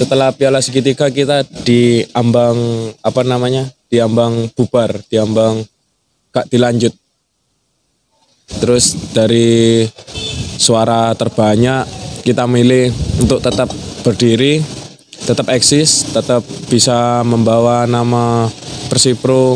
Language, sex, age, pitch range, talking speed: Indonesian, male, 20-39, 115-135 Hz, 85 wpm